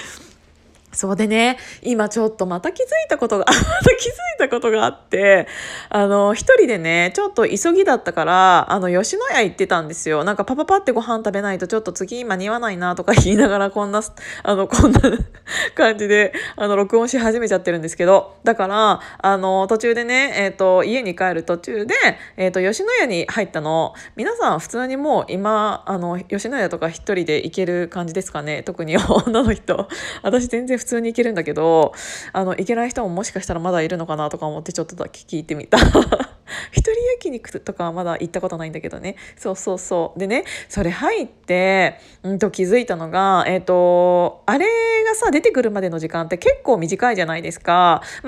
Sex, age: female, 20-39